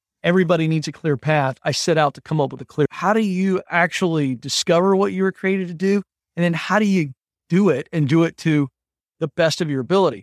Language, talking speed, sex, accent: English, 240 wpm, male, American